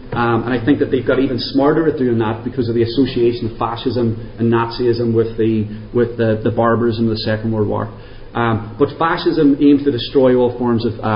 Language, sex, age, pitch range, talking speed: English, male, 30-49, 115-135 Hz, 220 wpm